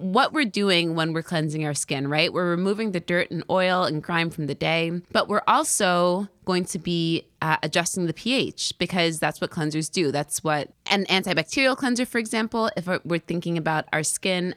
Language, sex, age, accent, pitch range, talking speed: English, female, 20-39, American, 155-195 Hz, 200 wpm